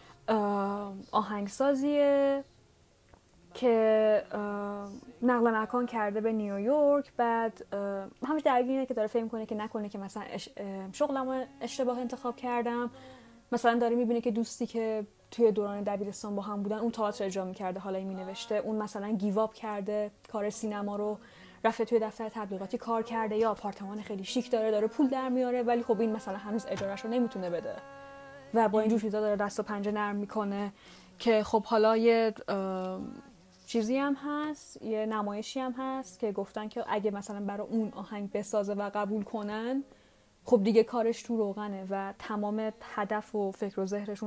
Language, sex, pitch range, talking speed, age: Persian, female, 205-235 Hz, 160 wpm, 10-29